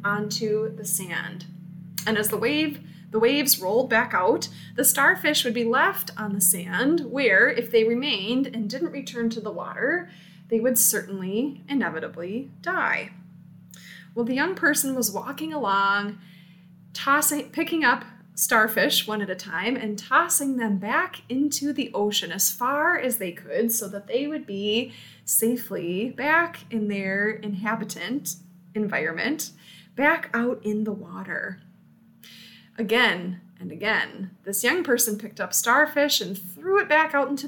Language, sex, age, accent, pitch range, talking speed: English, female, 20-39, American, 195-265 Hz, 145 wpm